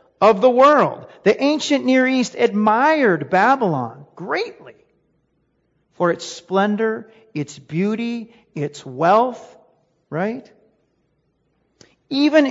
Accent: American